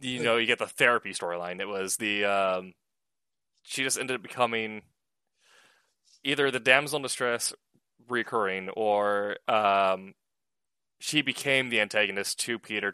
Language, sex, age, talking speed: English, male, 20-39, 140 wpm